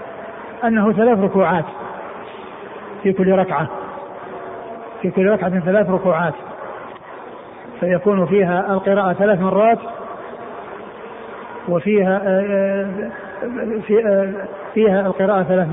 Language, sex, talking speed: Arabic, male, 80 wpm